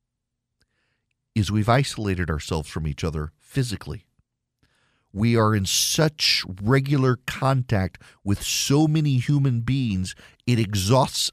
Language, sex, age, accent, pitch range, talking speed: English, male, 50-69, American, 95-145 Hz, 110 wpm